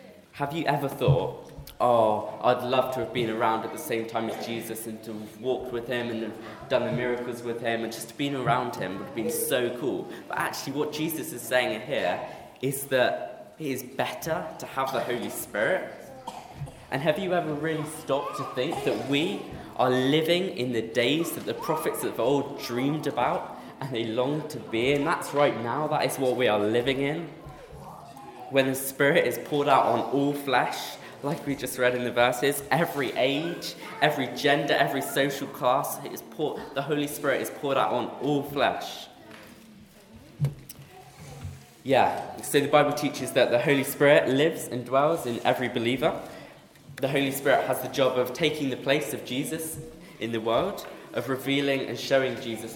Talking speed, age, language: 185 wpm, 20-39, English